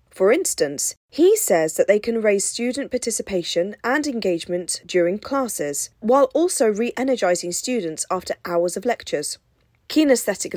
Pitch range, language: 175-255 Hz, English